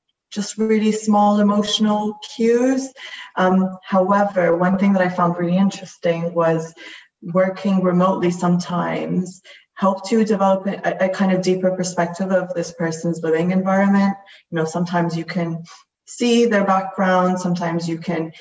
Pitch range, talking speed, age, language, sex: 170-200 Hz, 140 wpm, 20-39, English, female